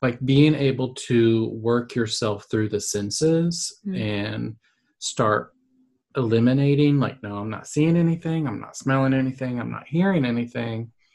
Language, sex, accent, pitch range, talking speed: English, male, American, 105-135 Hz, 140 wpm